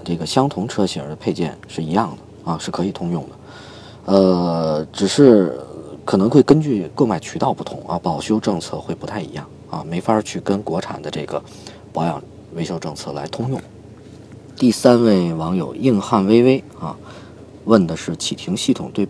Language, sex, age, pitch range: Chinese, male, 40-59, 90-130 Hz